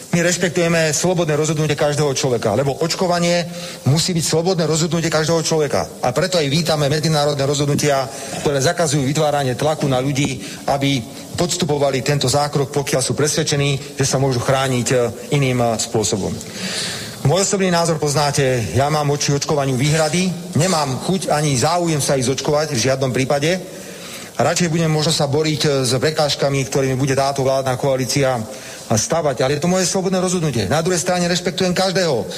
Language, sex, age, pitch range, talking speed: Slovak, male, 40-59, 135-165 Hz, 155 wpm